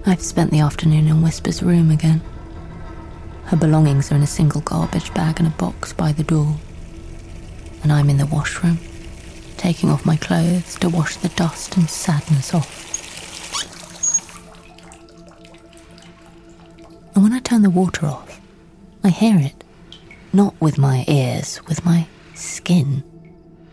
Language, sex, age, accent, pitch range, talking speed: English, female, 30-49, British, 105-170 Hz, 140 wpm